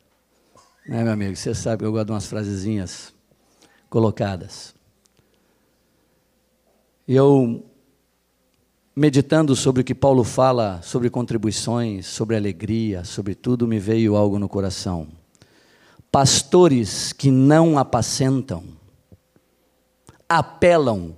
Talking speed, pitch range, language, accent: 100 wpm, 100-130 Hz, Portuguese, Brazilian